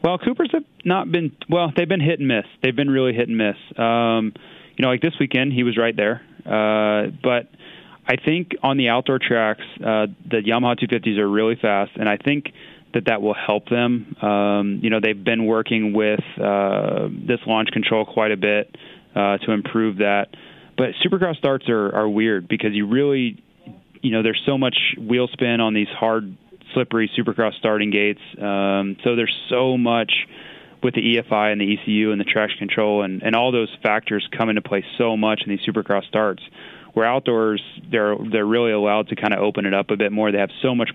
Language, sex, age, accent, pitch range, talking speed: English, male, 20-39, American, 105-120 Hz, 205 wpm